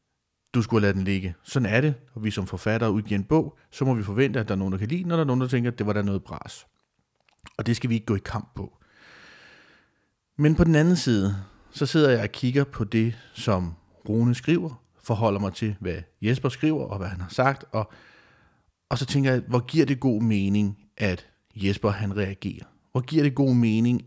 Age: 40-59